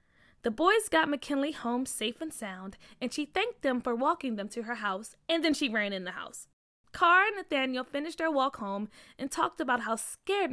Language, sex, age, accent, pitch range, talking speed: English, female, 20-39, American, 235-345 Hz, 210 wpm